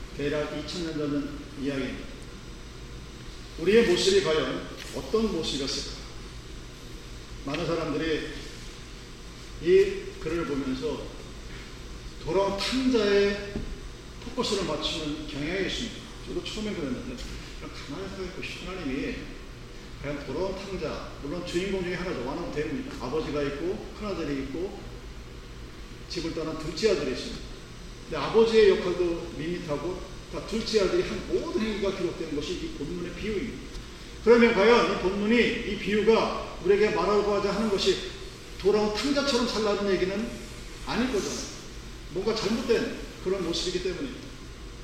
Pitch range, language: 160-235 Hz, Korean